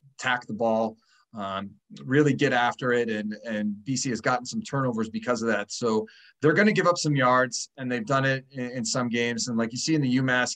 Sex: male